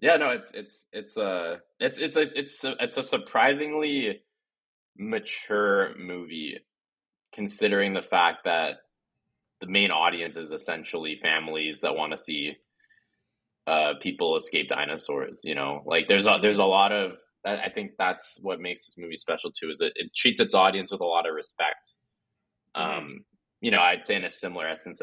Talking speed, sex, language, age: 170 wpm, male, English, 20-39